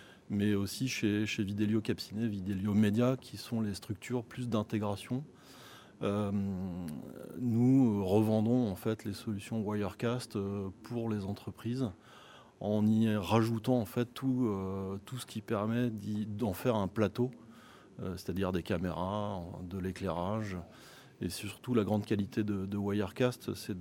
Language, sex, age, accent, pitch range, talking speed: French, male, 30-49, French, 100-115 Hz, 140 wpm